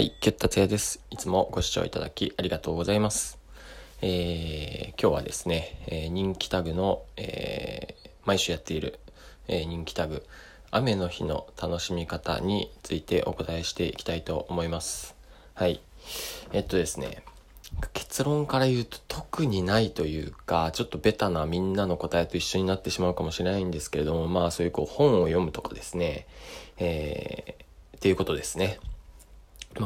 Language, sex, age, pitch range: Japanese, male, 20-39, 80-110 Hz